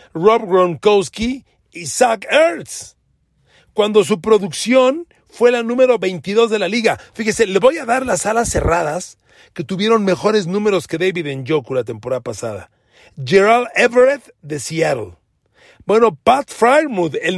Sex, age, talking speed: male, 40-59, 145 wpm